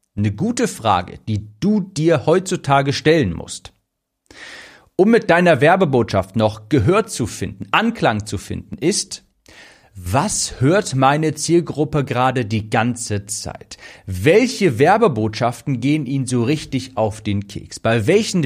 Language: German